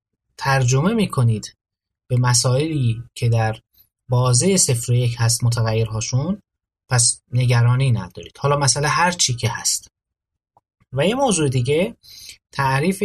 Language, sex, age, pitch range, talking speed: Persian, male, 30-49, 115-155 Hz, 105 wpm